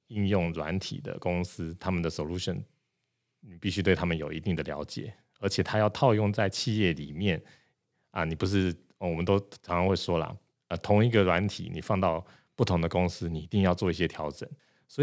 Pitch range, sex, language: 85-100 Hz, male, Chinese